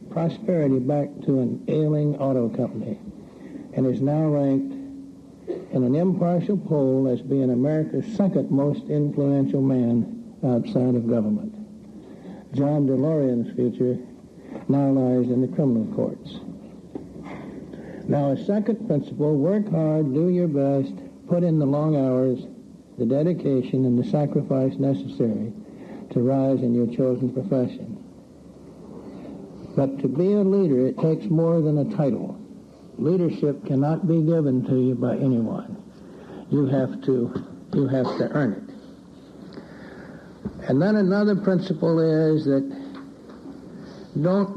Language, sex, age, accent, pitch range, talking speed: English, male, 60-79, American, 130-170 Hz, 125 wpm